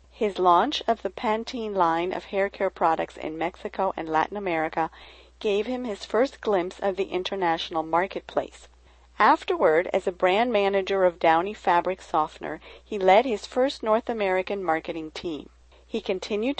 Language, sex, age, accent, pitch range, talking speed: English, female, 40-59, American, 175-220 Hz, 155 wpm